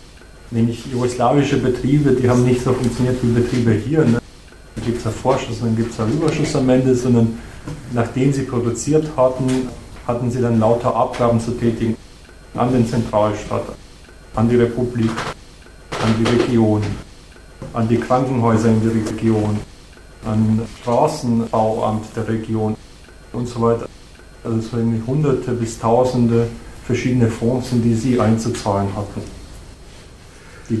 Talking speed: 140 wpm